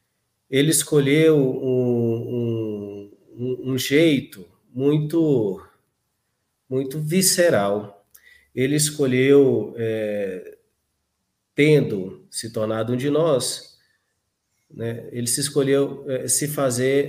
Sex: male